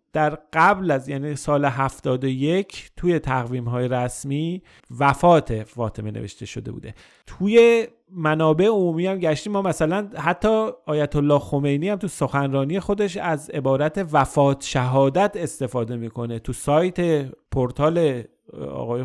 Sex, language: male, Persian